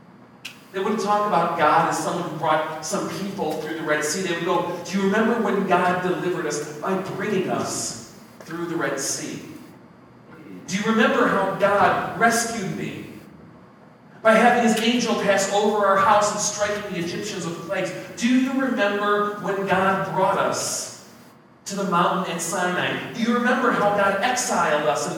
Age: 40-59